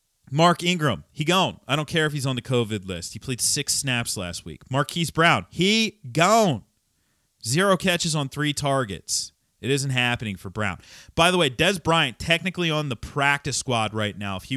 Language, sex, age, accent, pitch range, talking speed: English, male, 30-49, American, 100-150 Hz, 195 wpm